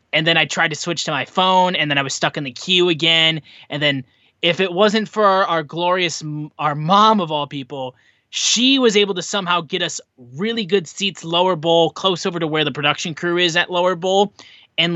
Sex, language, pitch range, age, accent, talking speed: male, English, 150-210 Hz, 20-39, American, 225 wpm